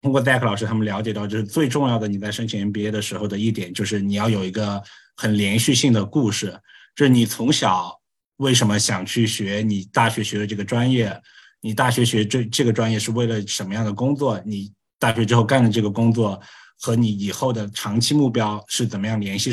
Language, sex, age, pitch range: Chinese, male, 20-39, 105-120 Hz